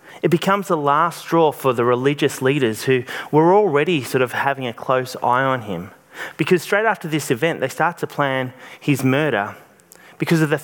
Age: 30-49